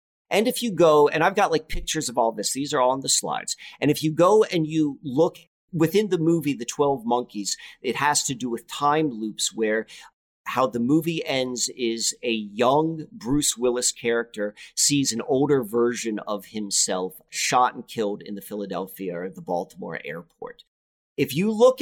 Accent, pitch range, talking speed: American, 120-165 Hz, 185 wpm